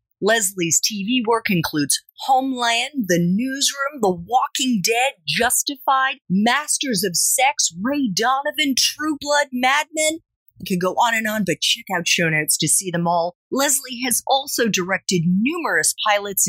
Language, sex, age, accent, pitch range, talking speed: English, female, 30-49, American, 170-260 Hz, 150 wpm